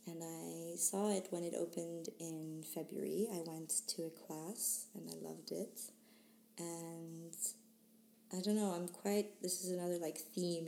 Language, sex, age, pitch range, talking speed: English, female, 20-39, 165-220 Hz, 165 wpm